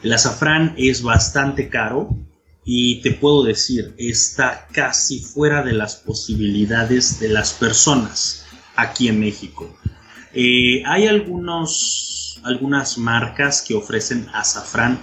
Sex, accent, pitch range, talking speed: male, Mexican, 105-145 Hz, 110 wpm